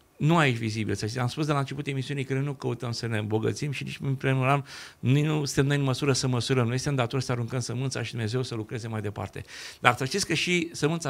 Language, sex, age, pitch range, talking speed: Romanian, male, 50-69, 120-145 Hz, 225 wpm